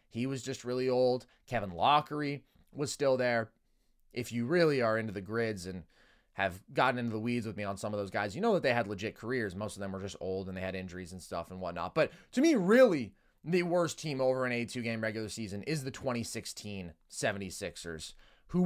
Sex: male